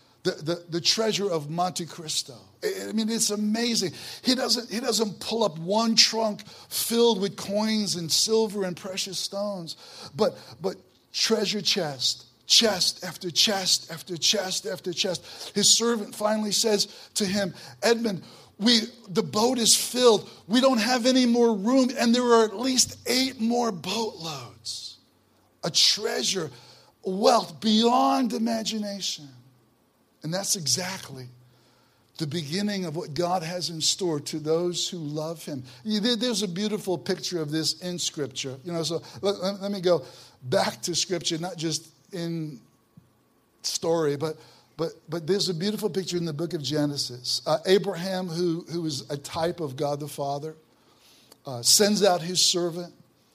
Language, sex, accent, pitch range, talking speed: English, male, American, 155-210 Hz, 150 wpm